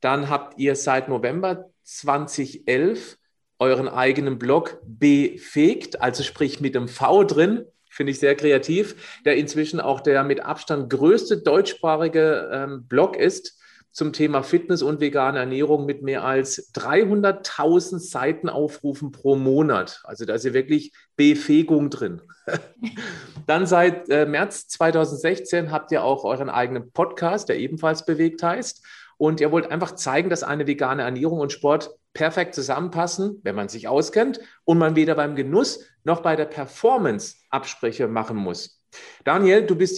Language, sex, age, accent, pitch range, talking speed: German, male, 40-59, German, 140-185 Hz, 145 wpm